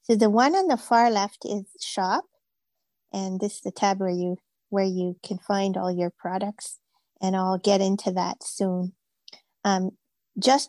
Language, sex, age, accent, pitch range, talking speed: English, female, 50-69, American, 200-245 Hz, 175 wpm